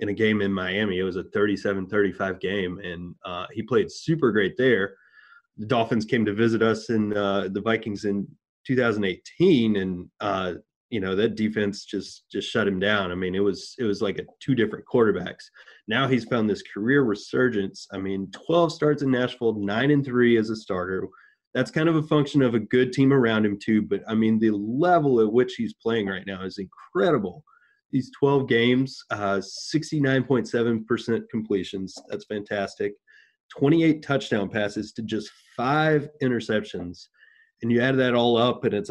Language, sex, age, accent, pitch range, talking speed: English, male, 30-49, American, 100-130 Hz, 180 wpm